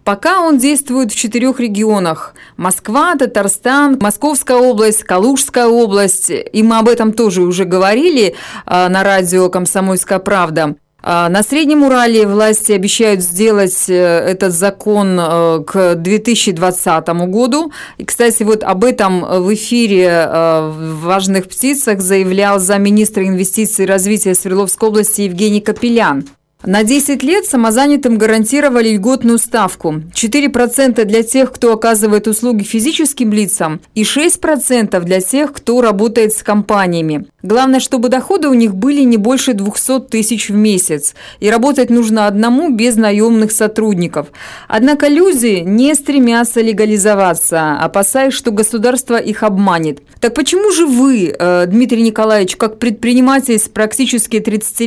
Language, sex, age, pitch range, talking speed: Russian, female, 20-39, 190-245 Hz, 130 wpm